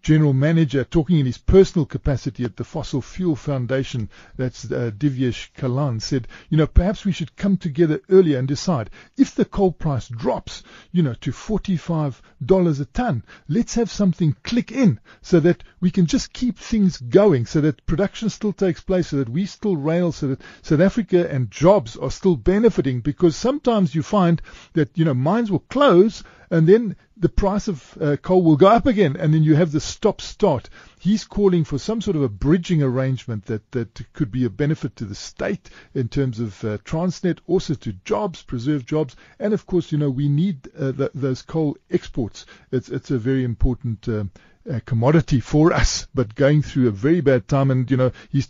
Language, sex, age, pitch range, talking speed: English, male, 50-69, 130-185 Hz, 195 wpm